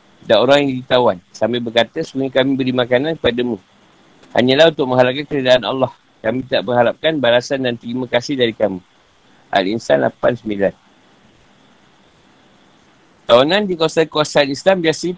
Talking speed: 130 wpm